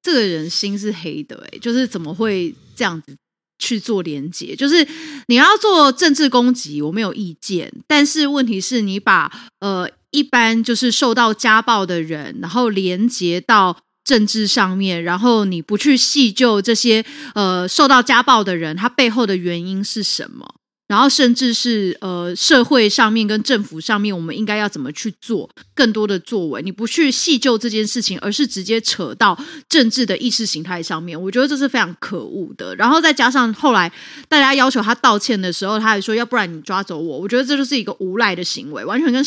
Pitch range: 195-260 Hz